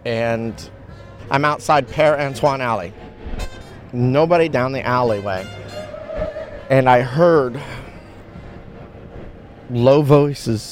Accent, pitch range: American, 105-140 Hz